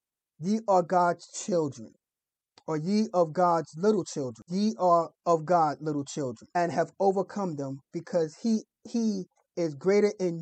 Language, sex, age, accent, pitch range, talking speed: English, male, 30-49, American, 160-195 Hz, 150 wpm